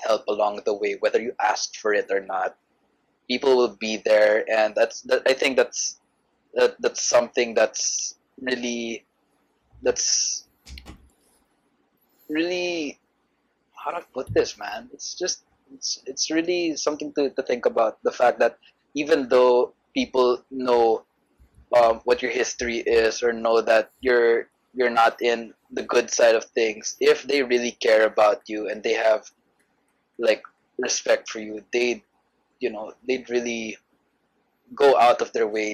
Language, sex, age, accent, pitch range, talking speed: English, male, 20-39, Filipino, 110-150 Hz, 150 wpm